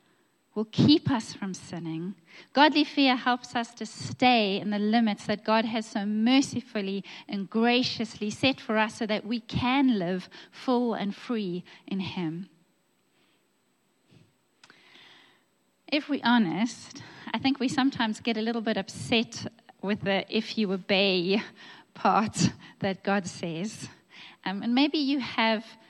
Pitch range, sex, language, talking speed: 195-245 Hz, female, English, 140 wpm